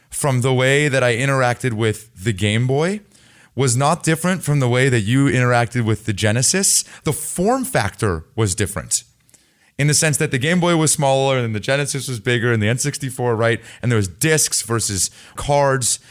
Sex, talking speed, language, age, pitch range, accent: male, 190 wpm, English, 30-49, 110-145 Hz, American